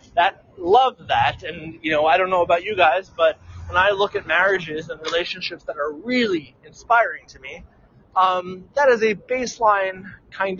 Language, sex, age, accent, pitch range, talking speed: English, male, 20-39, American, 155-200 Hz, 180 wpm